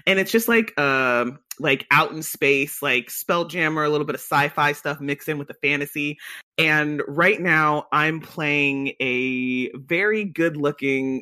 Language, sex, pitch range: English, male, 140-175 Hz